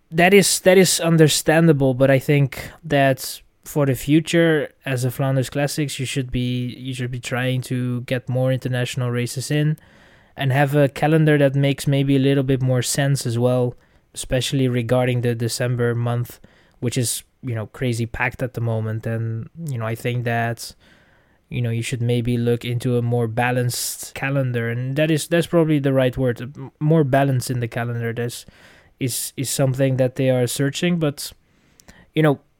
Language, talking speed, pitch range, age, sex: English, 180 wpm, 125-150 Hz, 20-39, male